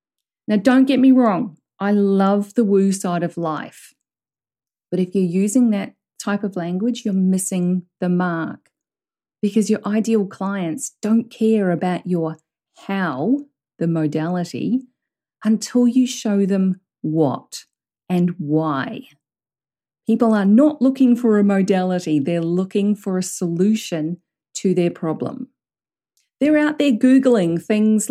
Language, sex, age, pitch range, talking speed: English, female, 40-59, 180-245 Hz, 130 wpm